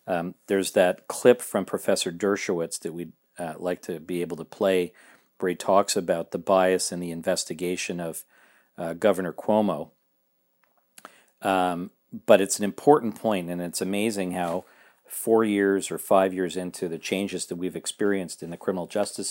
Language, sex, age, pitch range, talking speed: English, male, 50-69, 90-100 Hz, 170 wpm